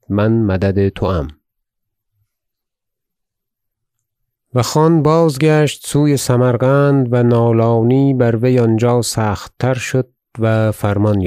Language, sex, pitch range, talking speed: Persian, male, 105-125 Hz, 100 wpm